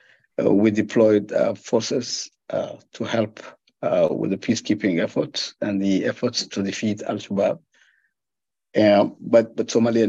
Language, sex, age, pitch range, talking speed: English, male, 50-69, 105-125 Hz, 145 wpm